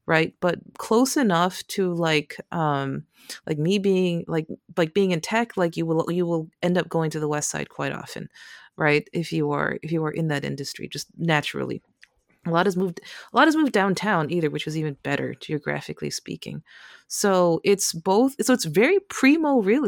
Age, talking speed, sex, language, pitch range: 30-49, 195 wpm, female, English, 155-195 Hz